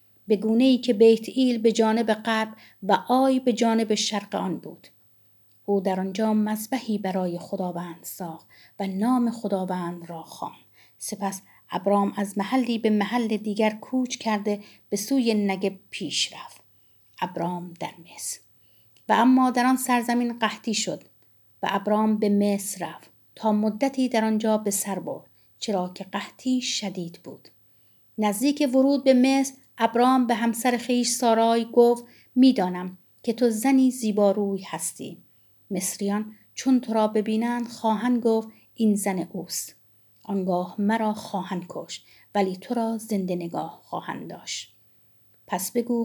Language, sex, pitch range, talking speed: Persian, female, 185-235 Hz, 140 wpm